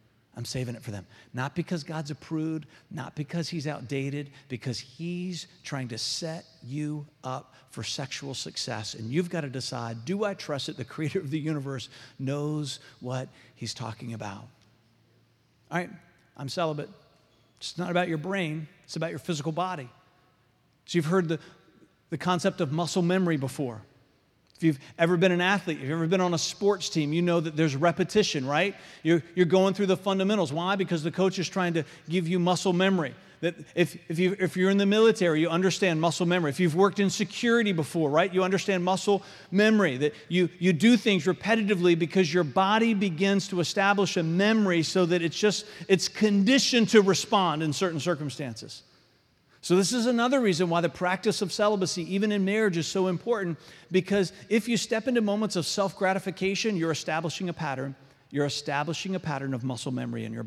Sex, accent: male, American